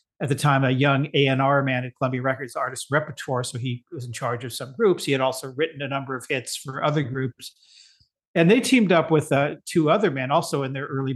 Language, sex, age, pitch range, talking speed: English, male, 50-69, 130-155 Hz, 235 wpm